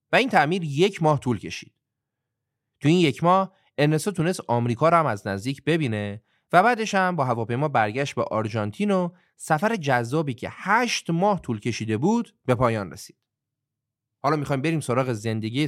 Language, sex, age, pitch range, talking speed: Persian, male, 30-49, 110-175 Hz, 165 wpm